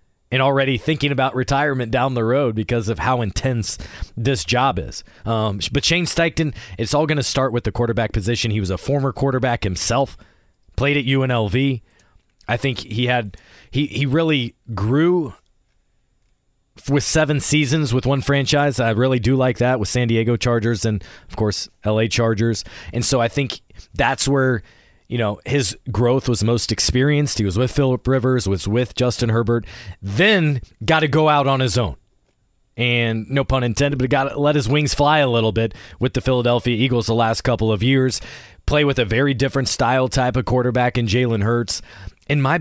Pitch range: 115-140 Hz